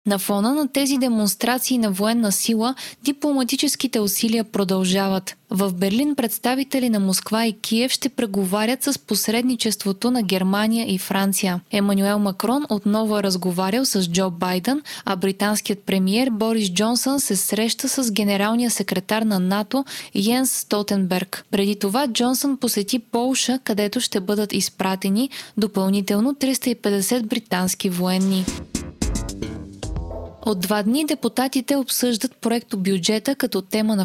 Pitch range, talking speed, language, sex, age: 195-250 Hz, 125 wpm, Bulgarian, female, 20-39